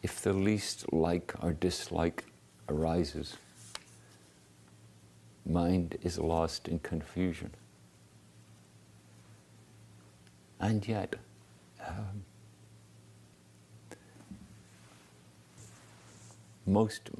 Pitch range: 70-105 Hz